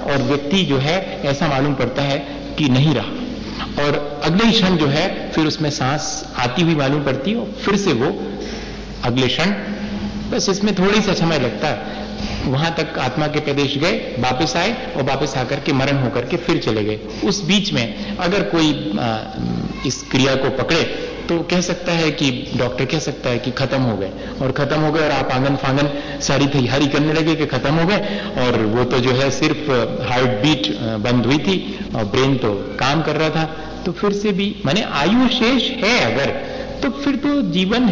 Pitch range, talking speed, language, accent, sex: 130-190 Hz, 195 wpm, Hindi, native, male